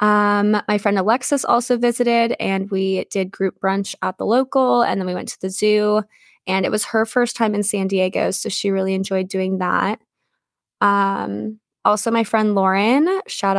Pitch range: 190-220 Hz